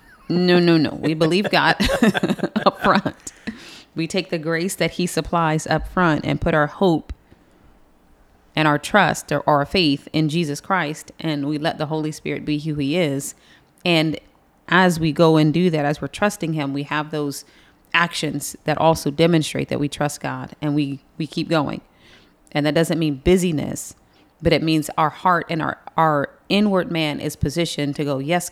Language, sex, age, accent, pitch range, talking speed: English, female, 30-49, American, 145-165 Hz, 185 wpm